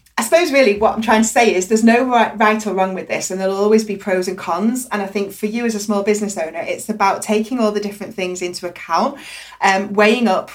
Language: English